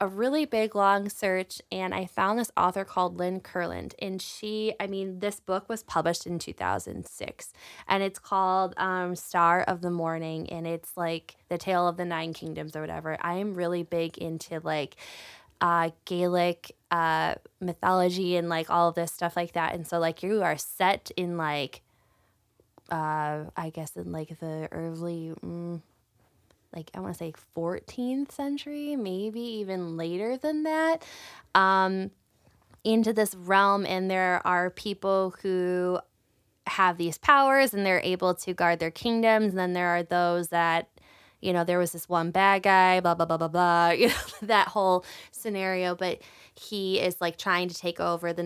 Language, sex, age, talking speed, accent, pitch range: English, female, 10-29, 175 wpm, American, 165-190 Hz